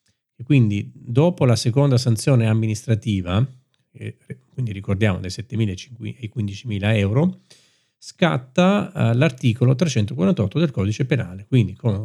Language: Italian